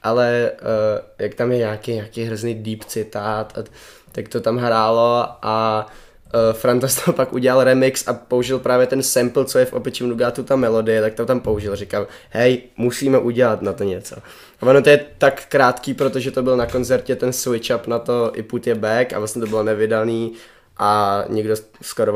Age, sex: 20-39, male